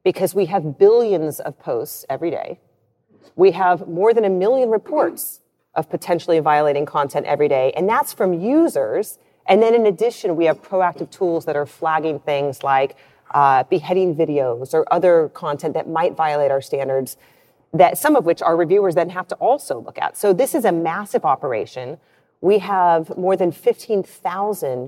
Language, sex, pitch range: English, female, 155-240 Hz